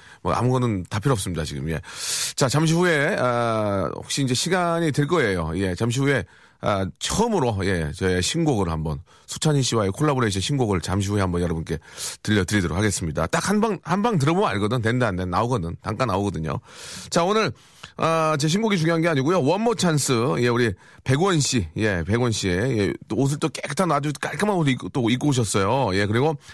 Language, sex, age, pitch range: Korean, male, 40-59, 105-160 Hz